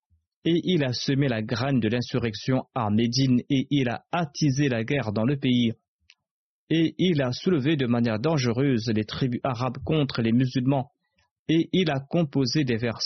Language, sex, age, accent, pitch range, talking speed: French, male, 30-49, French, 115-145 Hz, 175 wpm